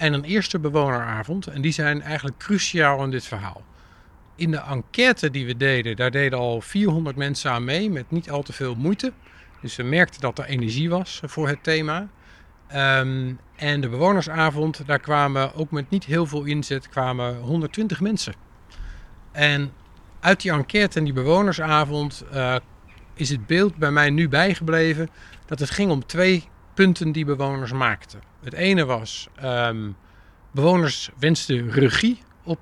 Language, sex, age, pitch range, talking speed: Dutch, male, 50-69, 125-165 Hz, 160 wpm